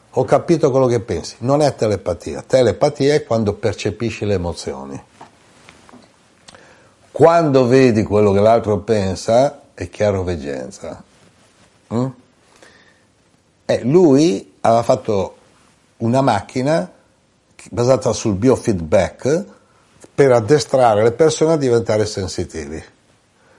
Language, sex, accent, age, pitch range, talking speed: Italian, male, native, 60-79, 105-135 Hz, 100 wpm